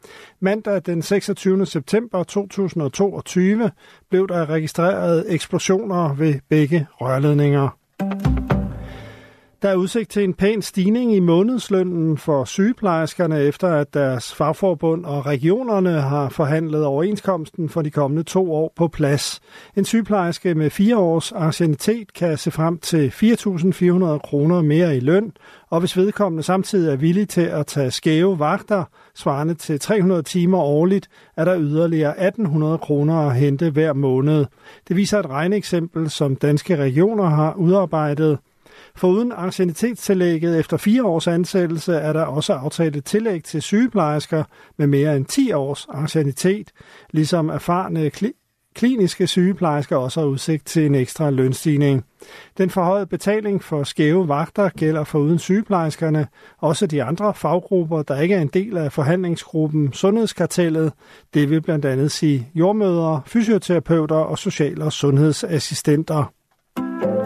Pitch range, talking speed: 150-190 Hz, 135 wpm